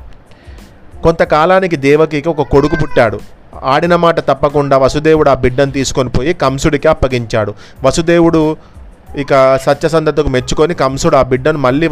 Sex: male